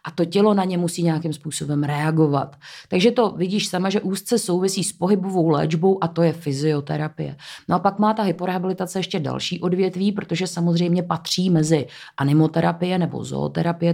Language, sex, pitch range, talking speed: Czech, female, 150-175 Hz, 170 wpm